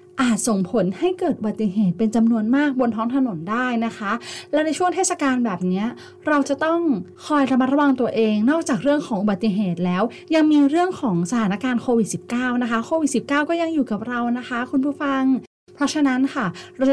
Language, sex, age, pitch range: Thai, female, 20-39, 210-285 Hz